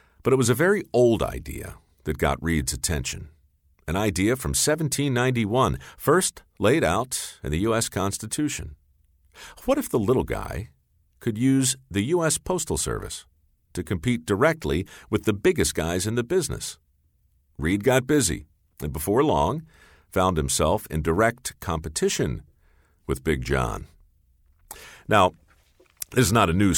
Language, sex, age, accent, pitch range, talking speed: English, male, 50-69, American, 75-105 Hz, 140 wpm